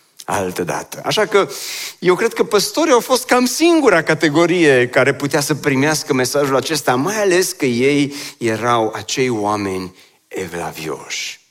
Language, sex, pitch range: Romanian, male, 110-160 Hz